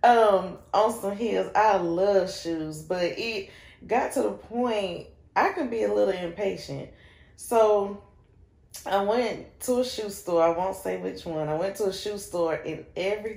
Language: English